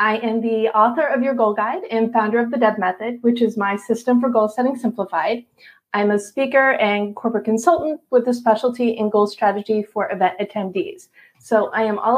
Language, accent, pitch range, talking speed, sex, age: English, American, 215-255 Hz, 200 wpm, female, 30-49